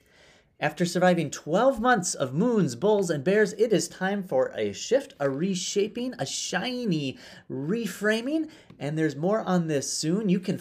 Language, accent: English, American